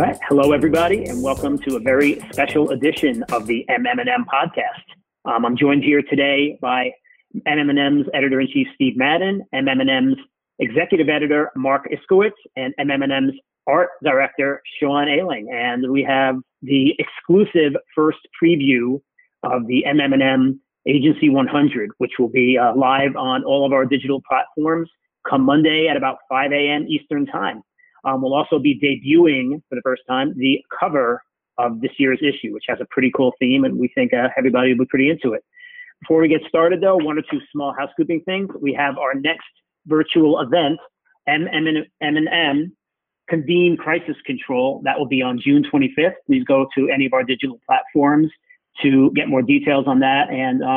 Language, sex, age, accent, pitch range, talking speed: English, male, 40-59, American, 135-170 Hz, 175 wpm